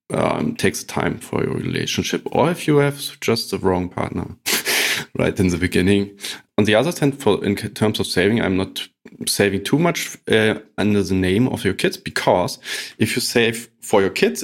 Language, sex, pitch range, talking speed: English, male, 95-115 Hz, 185 wpm